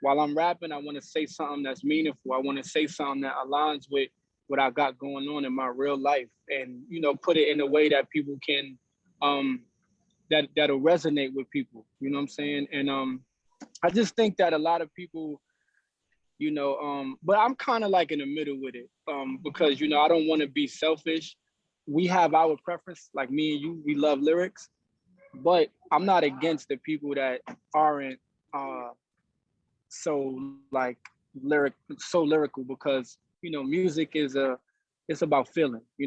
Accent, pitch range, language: American, 140-170 Hz, English